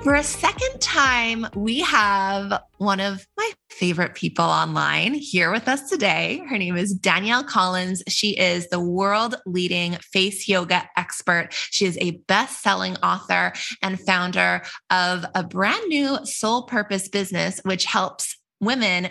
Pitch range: 185-230 Hz